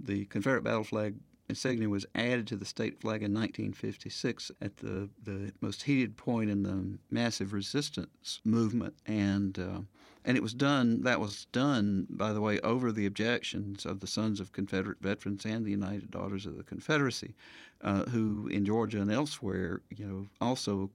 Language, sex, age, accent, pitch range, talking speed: English, male, 50-69, American, 100-110 Hz, 180 wpm